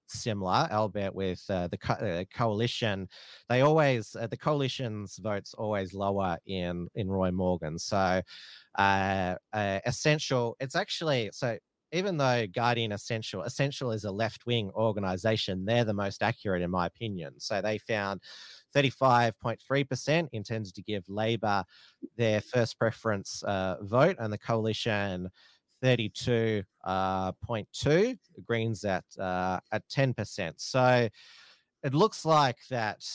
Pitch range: 100-125 Hz